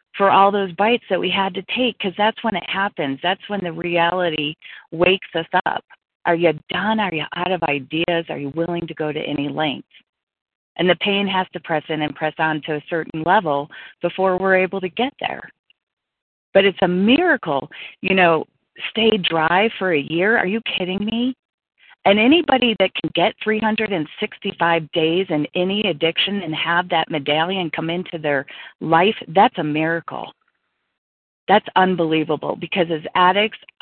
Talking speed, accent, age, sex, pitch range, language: 175 wpm, American, 40-59, female, 155-195 Hz, English